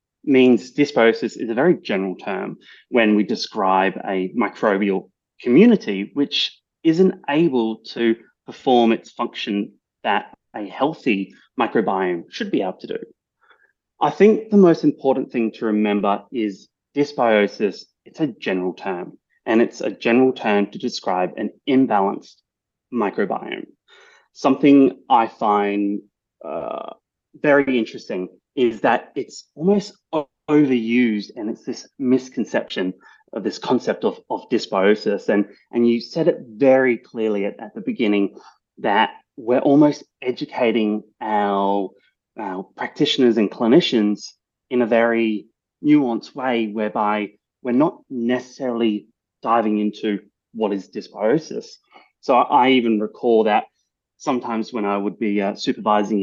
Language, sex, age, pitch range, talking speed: English, male, 30-49, 105-130 Hz, 130 wpm